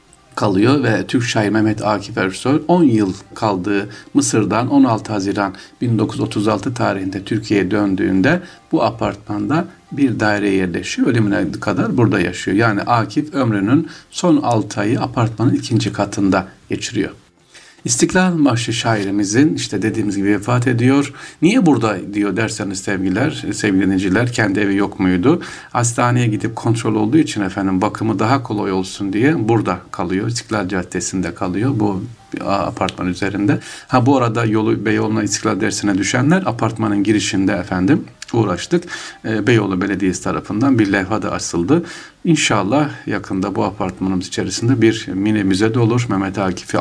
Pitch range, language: 95-120 Hz, Turkish